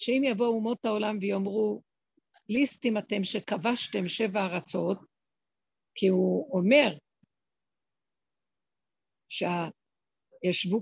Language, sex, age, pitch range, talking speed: Hebrew, female, 50-69, 195-240 Hz, 80 wpm